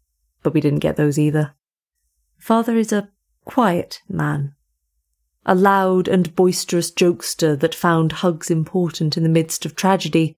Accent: British